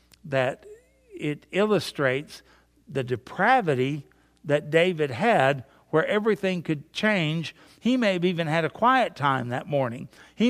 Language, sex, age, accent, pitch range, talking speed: English, male, 60-79, American, 145-185 Hz, 130 wpm